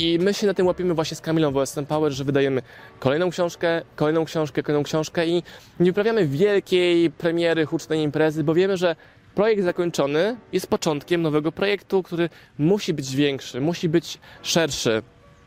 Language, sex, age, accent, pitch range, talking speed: Polish, male, 20-39, native, 140-170 Hz, 165 wpm